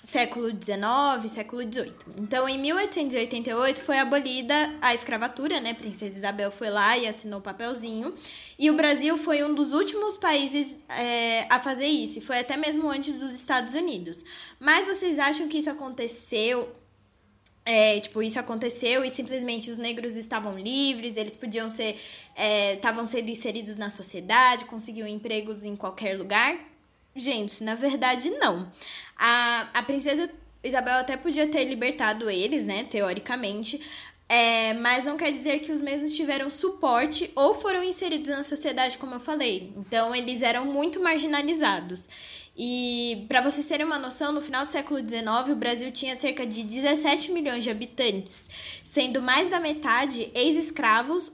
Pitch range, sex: 230-295 Hz, female